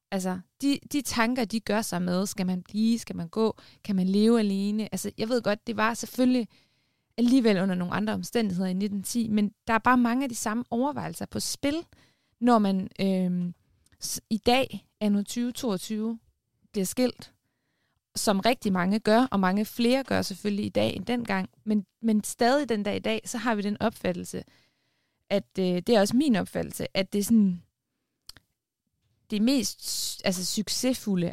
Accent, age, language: native, 20-39, Danish